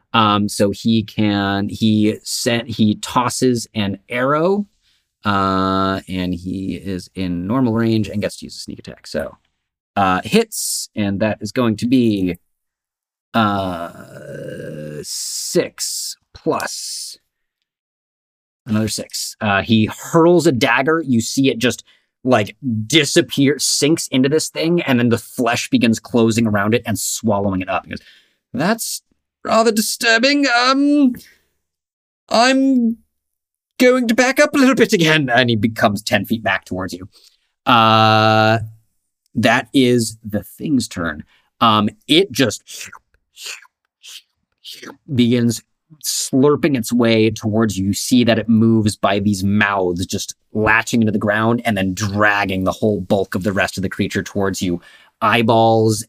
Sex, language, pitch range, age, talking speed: male, English, 100-130 Hz, 30-49, 140 wpm